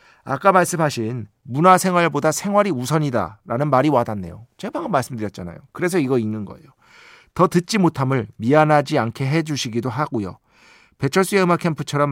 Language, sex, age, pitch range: Korean, male, 40-59, 115-165 Hz